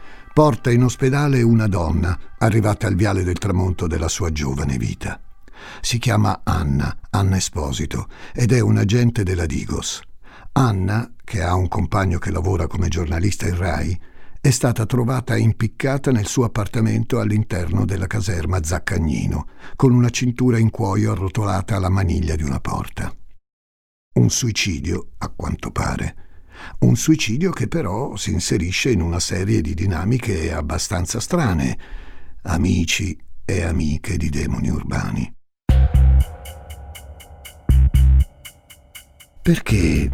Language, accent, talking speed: Italian, native, 125 wpm